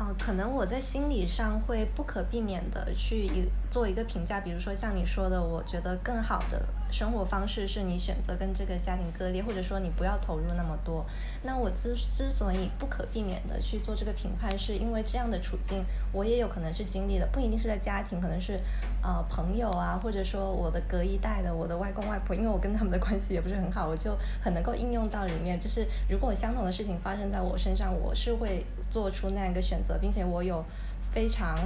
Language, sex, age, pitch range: Chinese, female, 20-39, 180-220 Hz